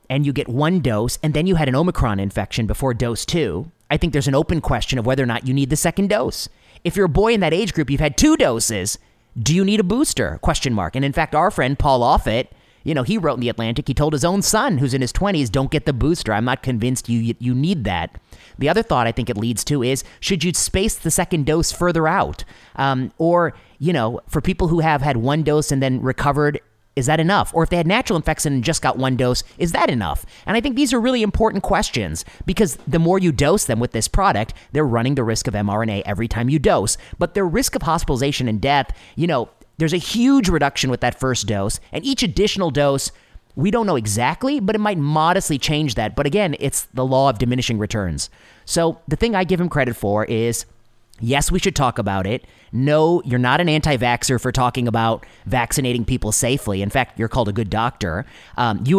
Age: 30-49